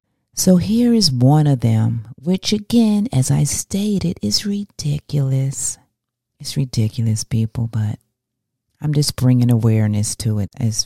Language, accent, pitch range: English, American, 115-135 Hz